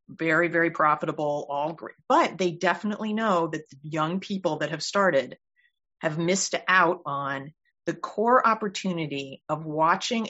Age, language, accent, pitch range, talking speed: 30-49, English, American, 150-190 Hz, 140 wpm